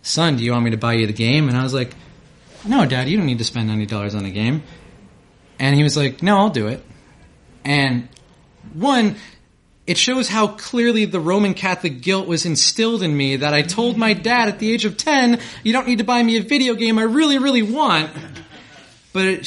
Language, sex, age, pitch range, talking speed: English, male, 30-49, 130-210 Hz, 225 wpm